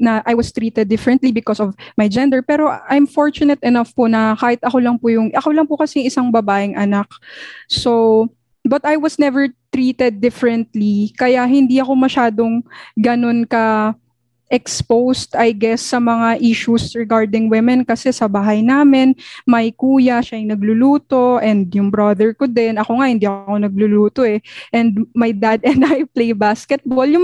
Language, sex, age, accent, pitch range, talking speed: English, female, 20-39, Filipino, 225-275 Hz, 165 wpm